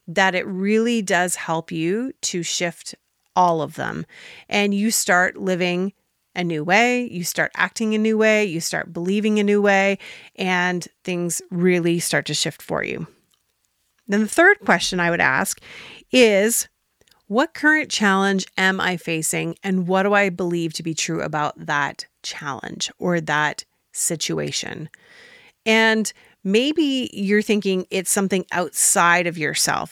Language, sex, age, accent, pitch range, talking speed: English, female, 30-49, American, 175-215 Hz, 150 wpm